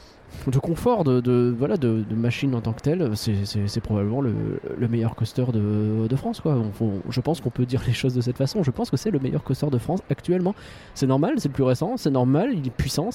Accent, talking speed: French, 260 wpm